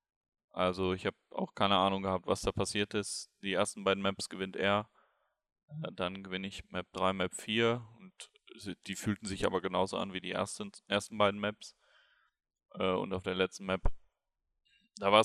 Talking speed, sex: 175 wpm, male